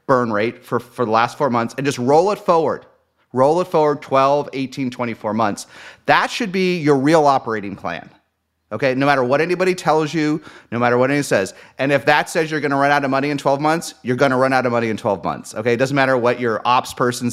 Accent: American